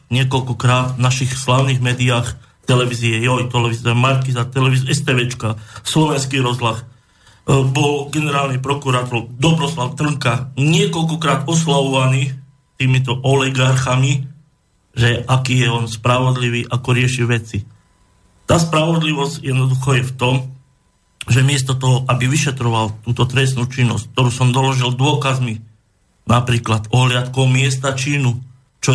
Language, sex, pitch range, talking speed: Slovak, male, 125-150 Hz, 110 wpm